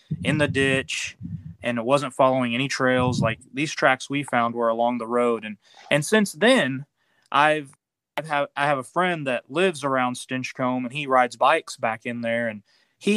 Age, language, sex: 20-39, English, male